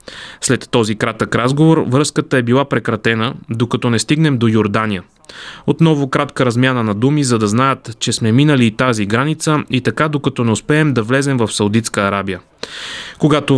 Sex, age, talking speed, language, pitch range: male, 20-39, 170 wpm, Bulgarian, 115-150 Hz